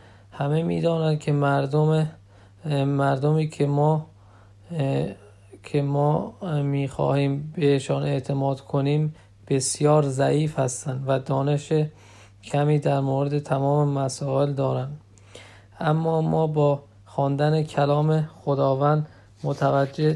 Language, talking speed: Persian, 90 wpm